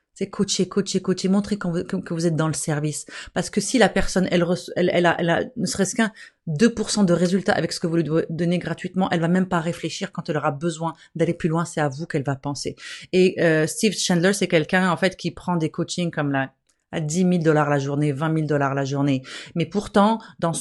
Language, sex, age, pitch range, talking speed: French, female, 30-49, 165-200 Hz, 235 wpm